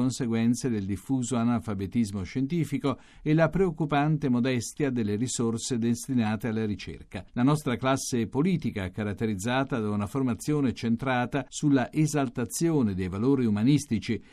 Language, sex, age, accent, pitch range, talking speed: Italian, male, 50-69, native, 115-150 Hz, 115 wpm